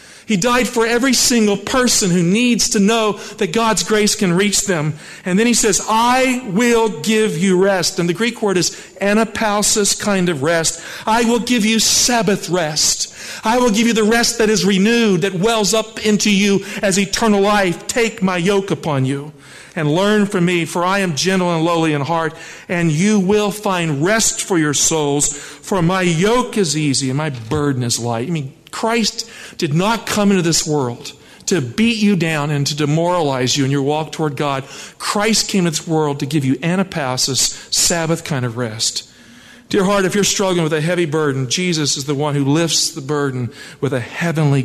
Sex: male